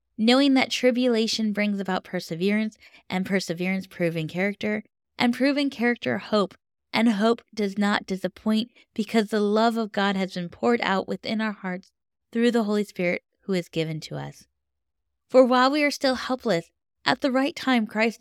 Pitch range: 175-240 Hz